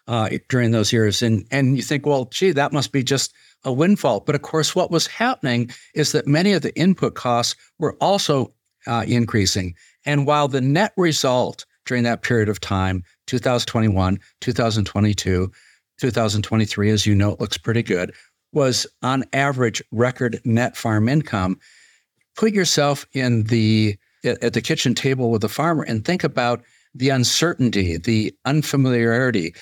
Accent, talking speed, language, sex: American, 160 wpm, English, male